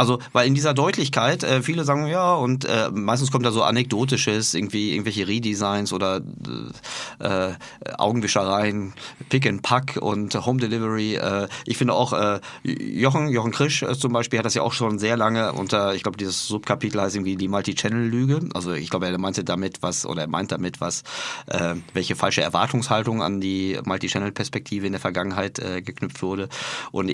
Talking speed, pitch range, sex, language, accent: 180 wpm, 95-125 Hz, male, German, German